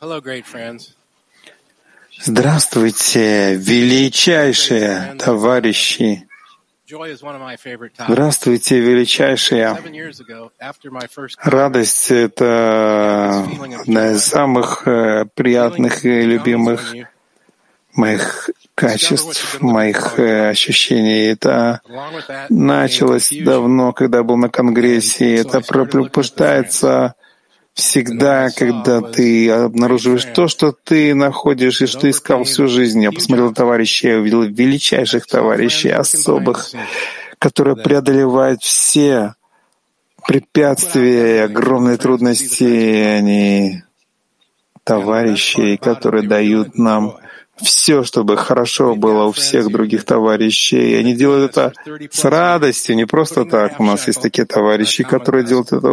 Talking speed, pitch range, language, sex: 95 wpm, 110-140 Hz, Russian, male